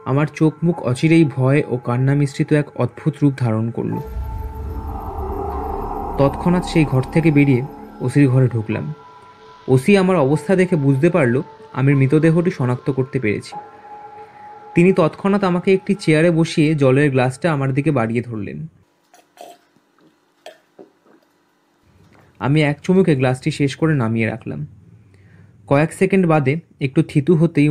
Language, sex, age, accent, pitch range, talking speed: Bengali, male, 30-49, native, 130-170 Hz, 80 wpm